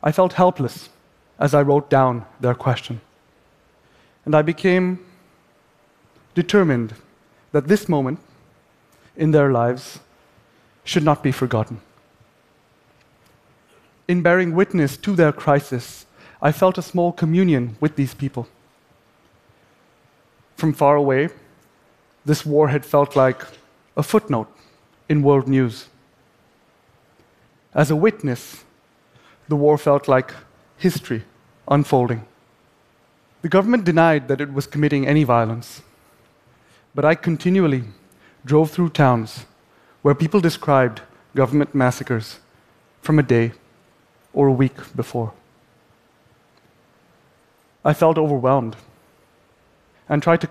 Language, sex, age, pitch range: Japanese, male, 30-49, 125-155 Hz